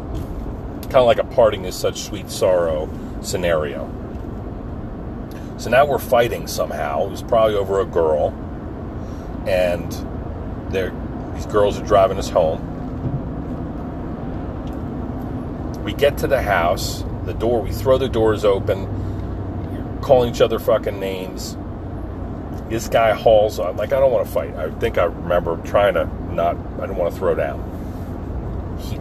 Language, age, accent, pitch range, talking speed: English, 40-59, American, 90-110 Hz, 145 wpm